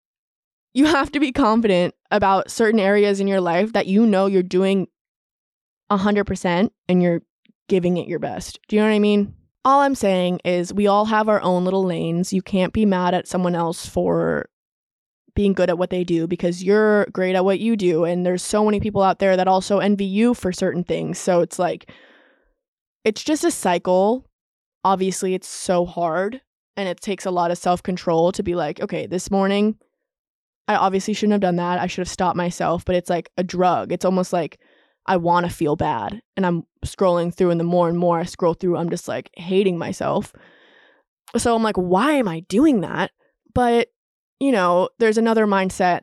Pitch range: 180-215 Hz